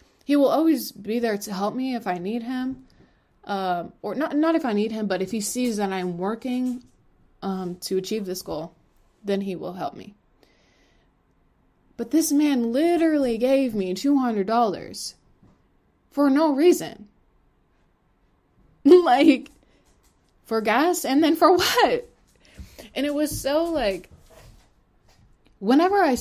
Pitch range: 200-285 Hz